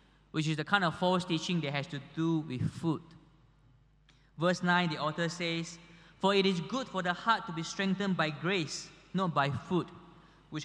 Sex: male